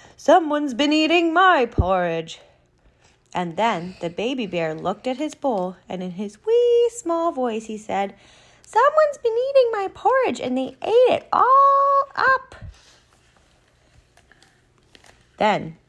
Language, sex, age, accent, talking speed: English, female, 30-49, American, 130 wpm